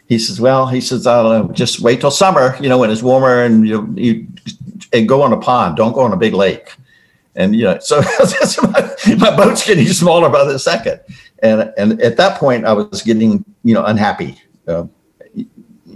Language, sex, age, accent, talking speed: English, male, 60-79, American, 195 wpm